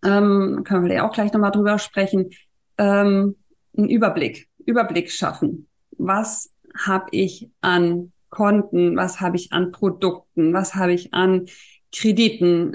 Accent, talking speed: German, 130 wpm